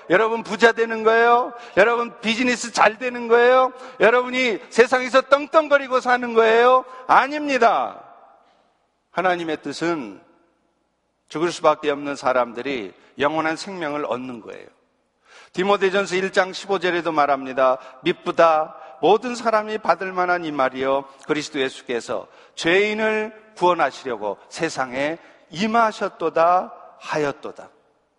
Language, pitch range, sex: Korean, 165-235 Hz, male